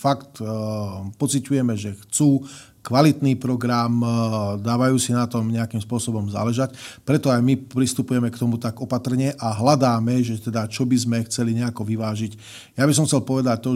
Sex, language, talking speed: male, Slovak, 170 wpm